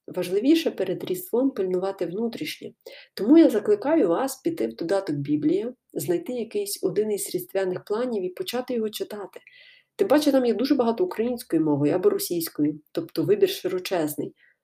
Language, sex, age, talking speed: Ukrainian, female, 30-49, 150 wpm